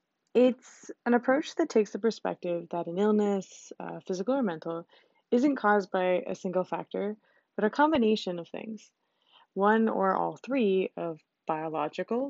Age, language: 20-39, English